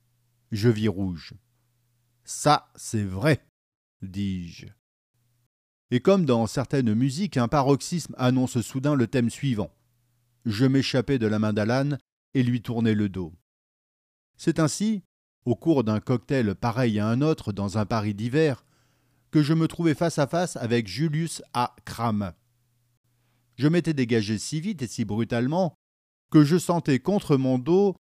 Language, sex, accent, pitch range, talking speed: French, male, French, 110-140 Hz, 150 wpm